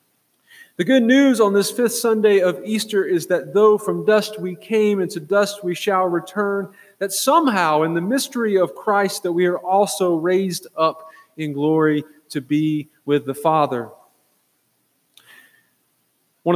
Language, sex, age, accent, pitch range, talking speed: English, male, 30-49, American, 140-195 Hz, 155 wpm